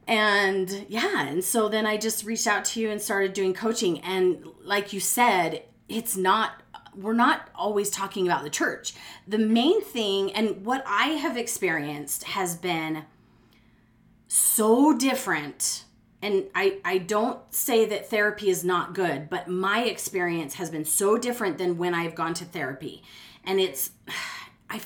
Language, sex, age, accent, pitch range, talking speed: English, female, 30-49, American, 180-235 Hz, 160 wpm